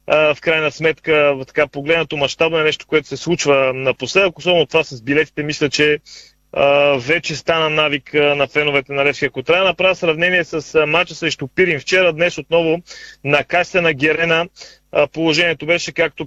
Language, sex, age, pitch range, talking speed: Bulgarian, male, 30-49, 140-165 Hz, 160 wpm